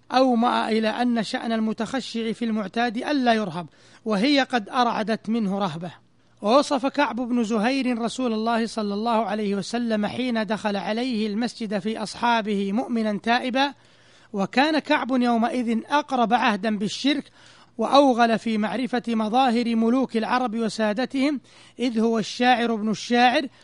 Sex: male